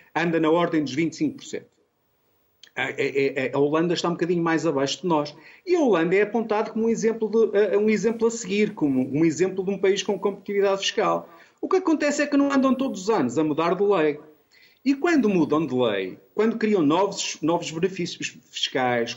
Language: Portuguese